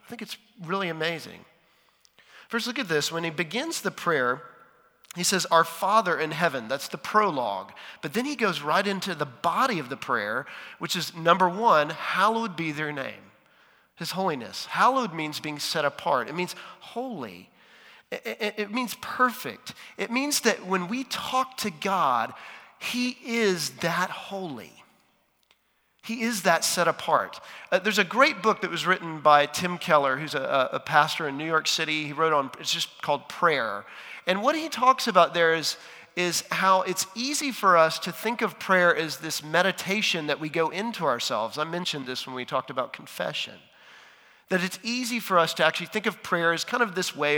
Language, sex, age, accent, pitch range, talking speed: English, male, 40-59, American, 160-215 Hz, 185 wpm